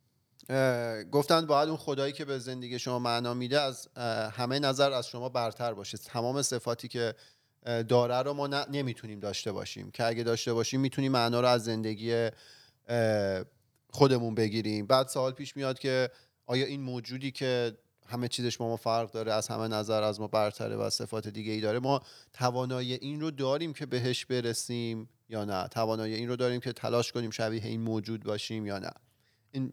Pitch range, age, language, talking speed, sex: 115-135 Hz, 30-49, Persian, 175 wpm, male